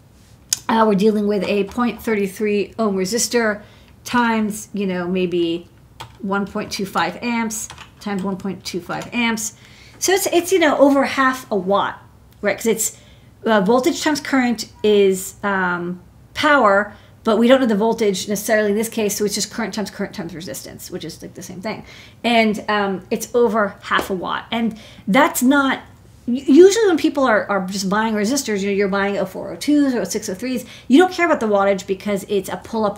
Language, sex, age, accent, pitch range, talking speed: English, female, 40-59, American, 195-235 Hz, 175 wpm